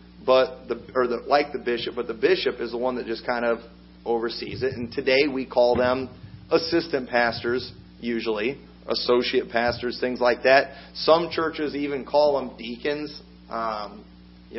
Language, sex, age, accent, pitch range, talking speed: English, male, 40-59, American, 115-150 Hz, 165 wpm